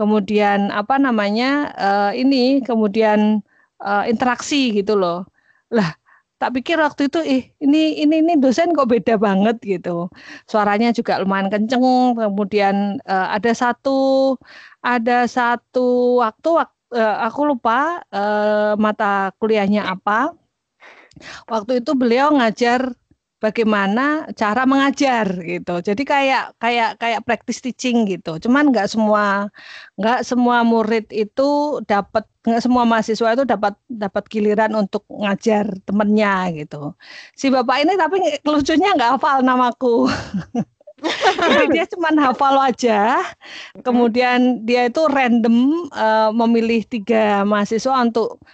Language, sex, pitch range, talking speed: Indonesian, female, 210-265 Hz, 115 wpm